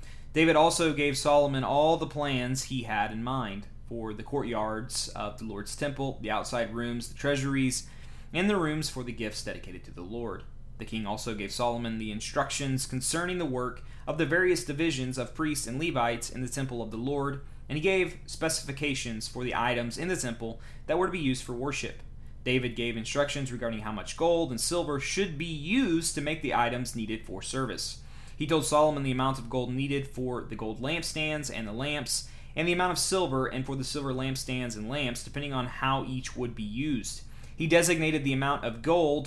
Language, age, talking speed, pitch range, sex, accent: English, 20-39, 205 wpm, 120-150 Hz, male, American